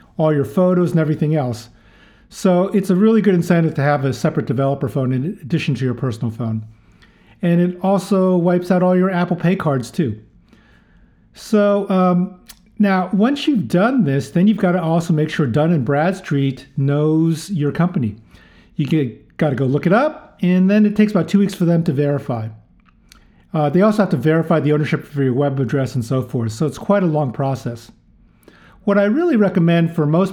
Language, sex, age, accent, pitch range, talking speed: English, male, 50-69, American, 145-185 Hz, 195 wpm